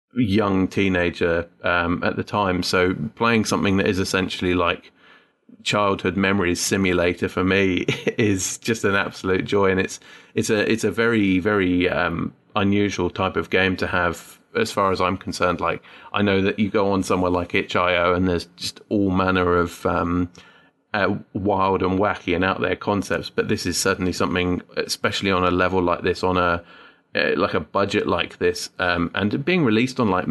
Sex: male